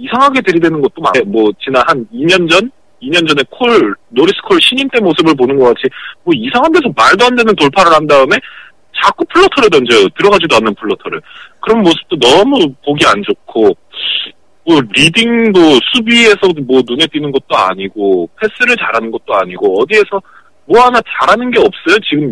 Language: Korean